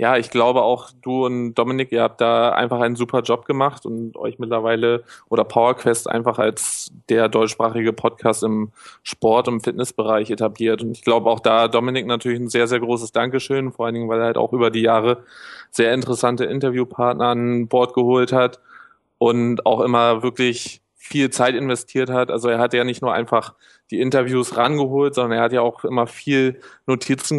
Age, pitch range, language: 20-39, 115-130 Hz, German